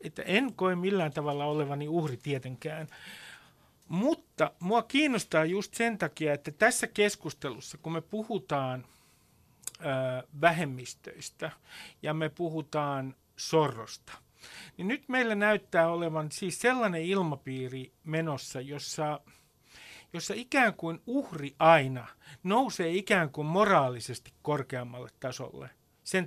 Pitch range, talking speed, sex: 145-200 Hz, 105 wpm, male